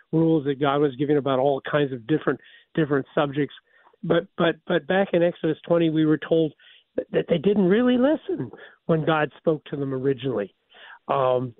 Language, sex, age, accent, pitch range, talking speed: English, male, 50-69, American, 145-180 Hz, 180 wpm